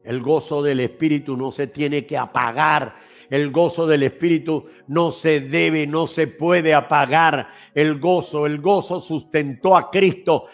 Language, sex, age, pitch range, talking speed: Spanish, male, 60-79, 165-200 Hz, 155 wpm